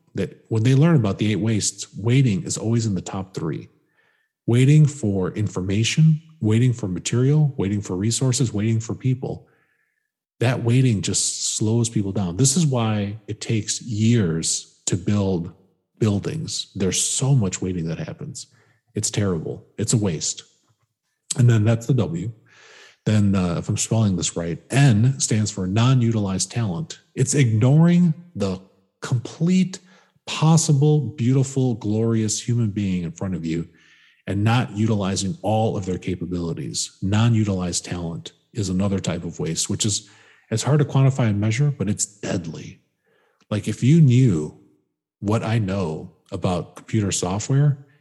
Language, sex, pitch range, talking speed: English, male, 95-130 Hz, 145 wpm